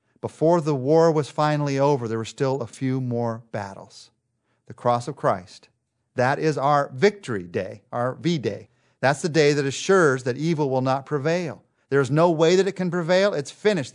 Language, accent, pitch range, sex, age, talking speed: English, American, 120-155 Hz, male, 50-69, 190 wpm